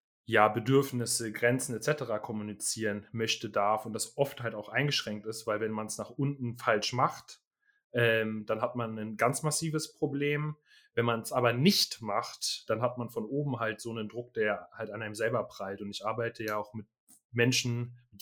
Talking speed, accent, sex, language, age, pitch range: 195 wpm, German, male, German, 30-49, 105-120 Hz